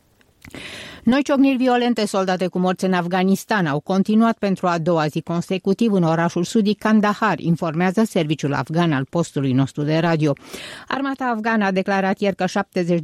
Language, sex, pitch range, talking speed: Romanian, female, 160-220 Hz, 155 wpm